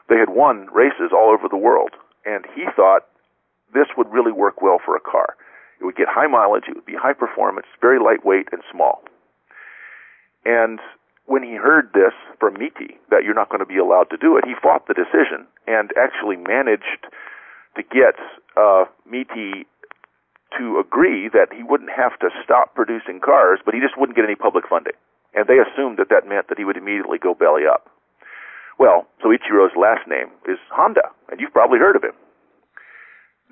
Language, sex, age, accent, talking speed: English, male, 50-69, American, 190 wpm